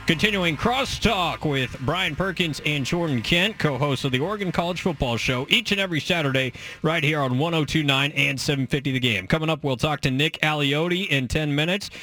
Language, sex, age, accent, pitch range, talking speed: English, male, 20-39, American, 120-155 Hz, 185 wpm